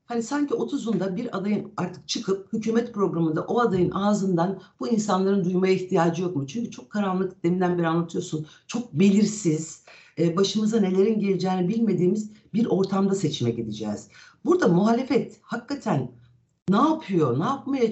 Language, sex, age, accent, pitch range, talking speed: Turkish, female, 60-79, native, 160-220 Hz, 135 wpm